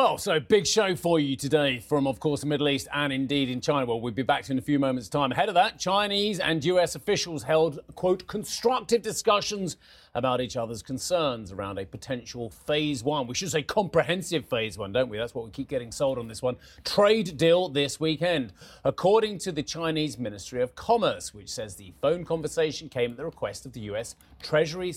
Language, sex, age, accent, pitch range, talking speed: English, male, 30-49, British, 125-170 Hz, 210 wpm